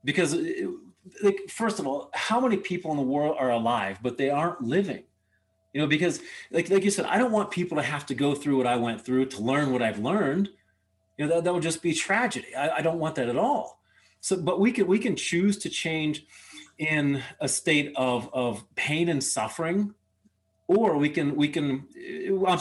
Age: 30-49